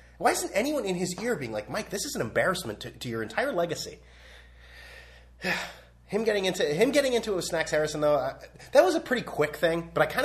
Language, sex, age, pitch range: English, male, 30-49, 110-180 Hz